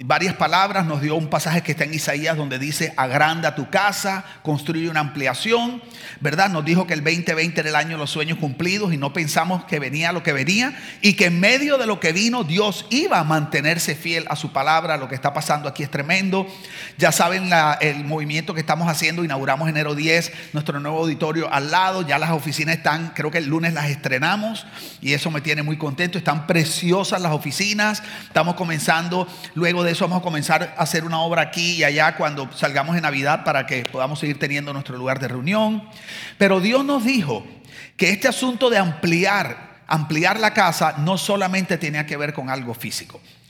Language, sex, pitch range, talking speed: English, male, 150-190 Hz, 195 wpm